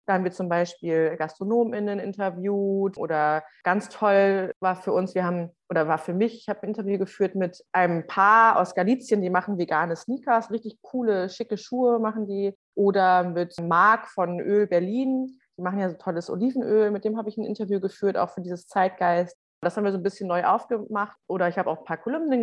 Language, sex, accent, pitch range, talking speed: German, female, German, 175-215 Hz, 205 wpm